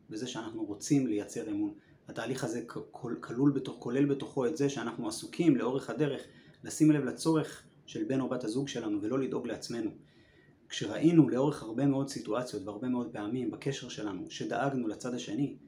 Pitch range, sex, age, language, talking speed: 125-160 Hz, male, 20-39, Hebrew, 160 wpm